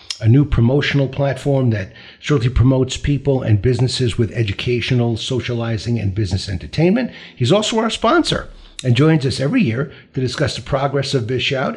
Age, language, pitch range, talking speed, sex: 60-79, English, 120-150 Hz, 160 wpm, male